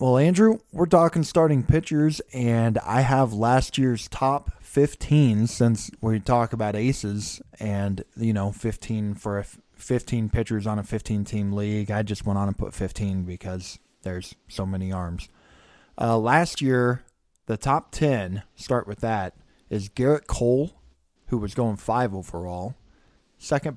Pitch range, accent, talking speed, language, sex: 100-130 Hz, American, 150 wpm, English, male